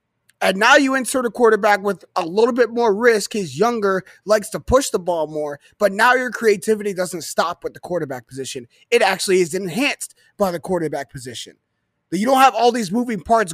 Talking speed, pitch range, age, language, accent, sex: 200 wpm, 175-230 Hz, 20-39, English, American, male